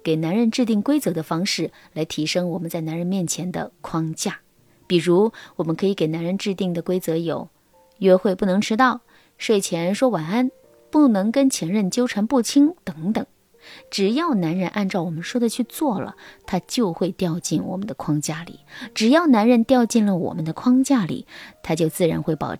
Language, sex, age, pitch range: Chinese, female, 30-49, 170-235 Hz